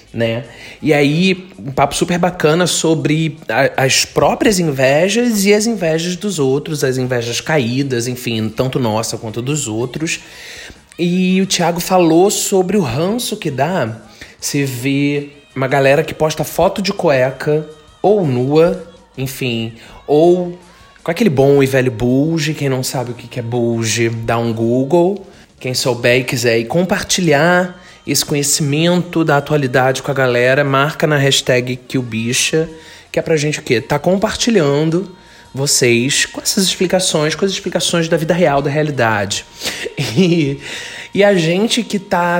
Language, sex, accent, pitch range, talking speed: Portuguese, male, Brazilian, 125-170 Hz, 155 wpm